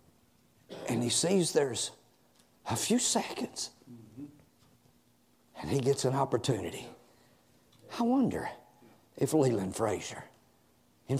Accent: American